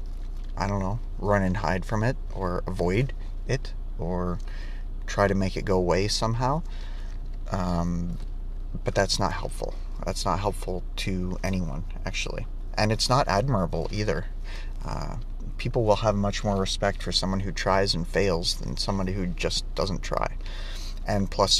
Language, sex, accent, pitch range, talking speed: English, male, American, 90-105 Hz, 155 wpm